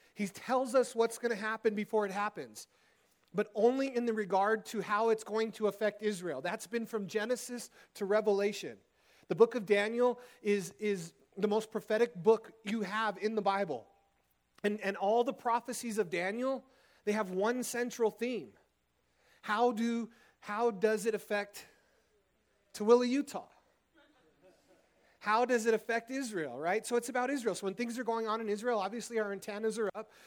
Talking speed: 170 wpm